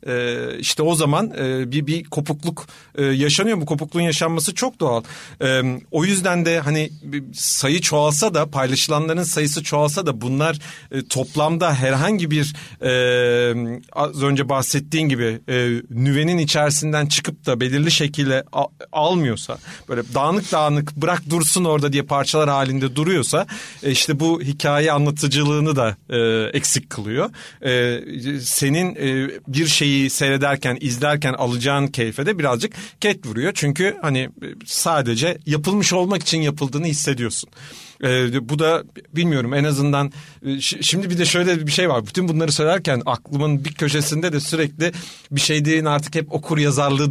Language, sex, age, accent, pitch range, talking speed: Turkish, male, 40-59, native, 135-160 Hz, 130 wpm